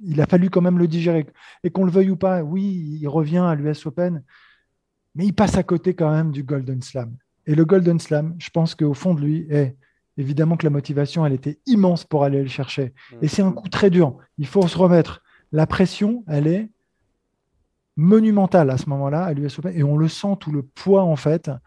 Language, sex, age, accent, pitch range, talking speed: French, male, 20-39, French, 145-175 Hz, 225 wpm